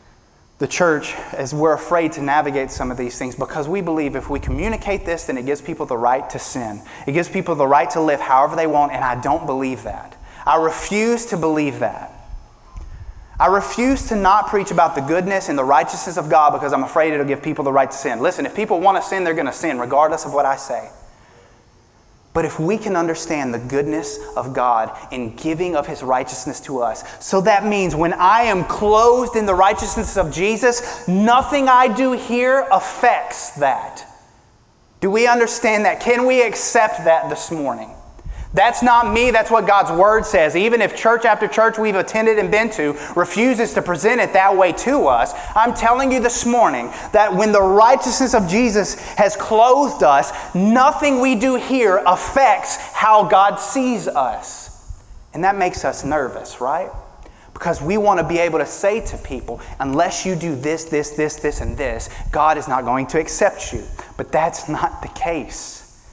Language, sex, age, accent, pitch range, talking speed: English, male, 20-39, American, 150-220 Hz, 195 wpm